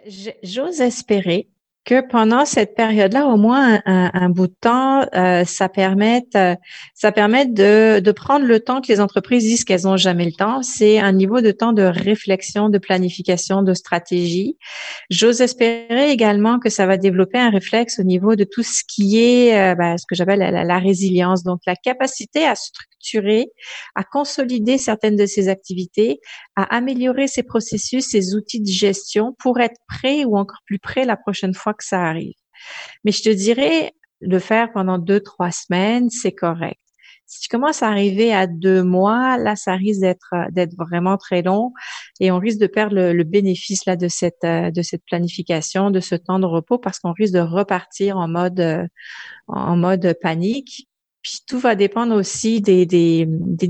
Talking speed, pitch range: 185 wpm, 185-230 Hz